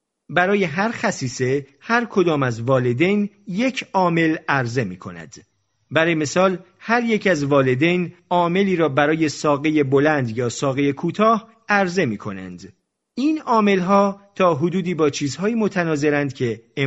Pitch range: 130-190 Hz